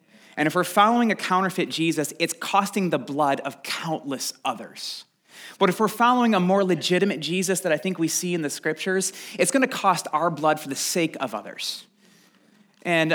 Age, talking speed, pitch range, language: 30-49, 190 wpm, 145-195 Hz, English